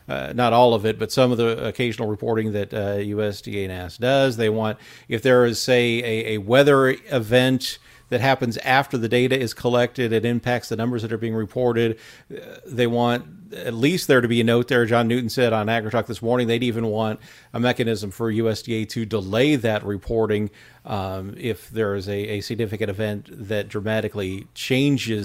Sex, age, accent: male, 40-59, American